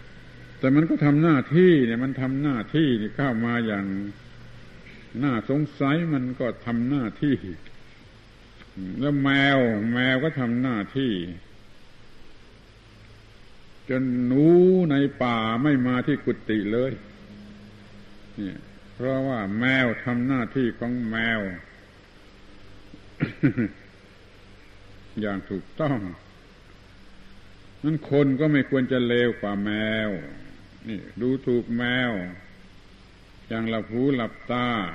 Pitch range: 100-130 Hz